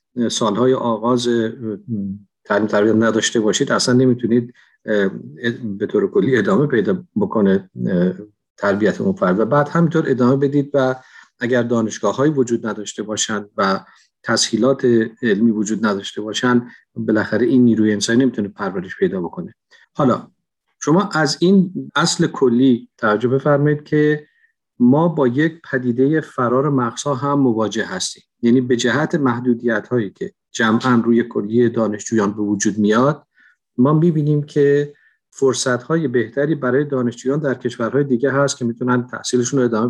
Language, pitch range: Persian, 115-140 Hz